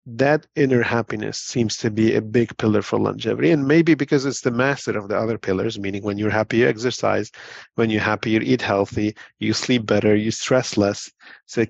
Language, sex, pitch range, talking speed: English, male, 105-125 Hz, 210 wpm